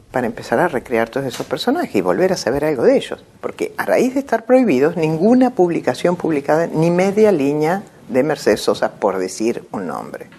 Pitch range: 170-270 Hz